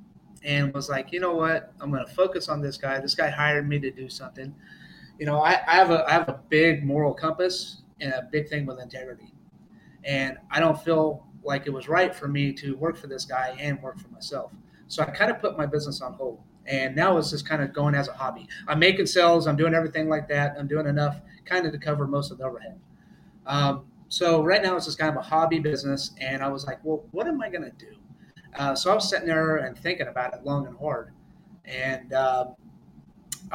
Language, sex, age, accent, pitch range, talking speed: English, male, 30-49, American, 140-165 Hz, 235 wpm